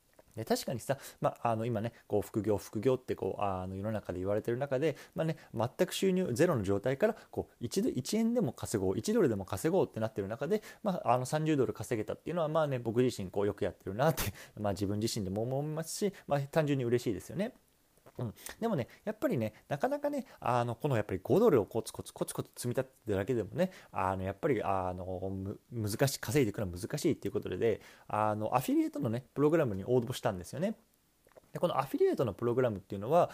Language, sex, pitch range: Japanese, male, 105-165 Hz